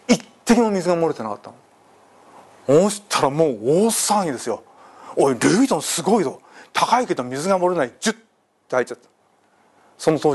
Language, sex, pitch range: Japanese, male, 140-225 Hz